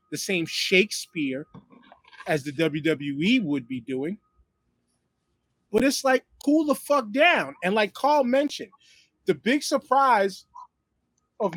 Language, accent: English, American